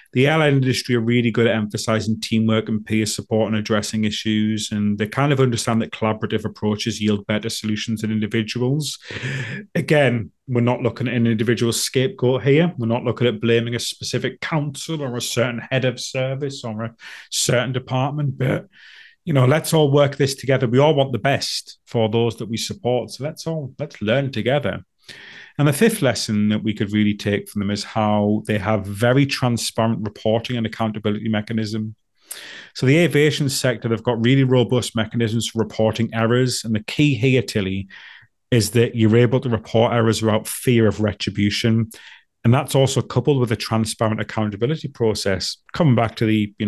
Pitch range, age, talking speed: 110-130 Hz, 30-49, 180 wpm